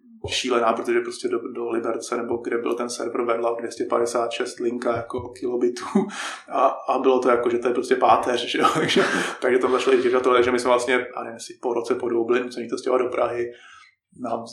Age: 20-39